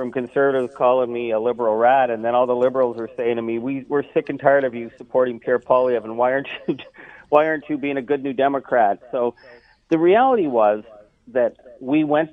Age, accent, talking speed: 40-59, American, 220 wpm